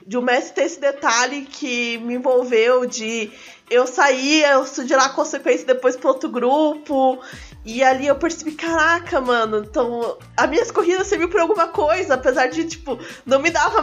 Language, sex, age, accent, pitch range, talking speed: Portuguese, female, 20-39, Brazilian, 230-290 Hz, 180 wpm